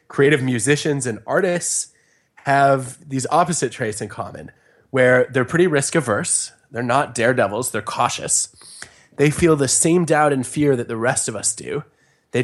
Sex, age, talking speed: male, 20-39, 160 wpm